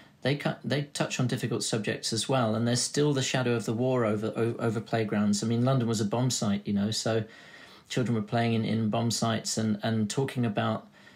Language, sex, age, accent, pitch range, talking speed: English, male, 40-59, British, 115-125 Hz, 225 wpm